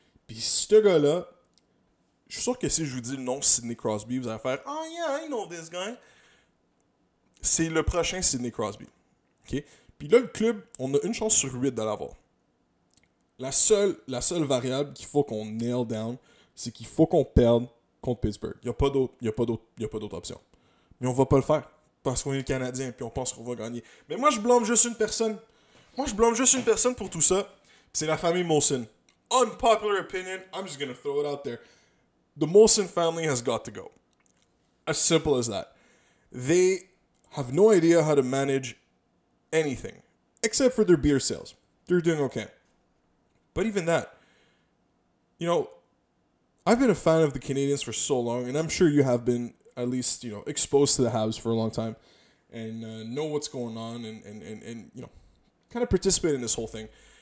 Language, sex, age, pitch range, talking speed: English, male, 20-39, 120-185 Hz, 200 wpm